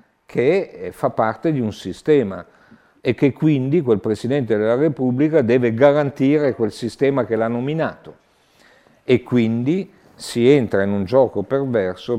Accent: native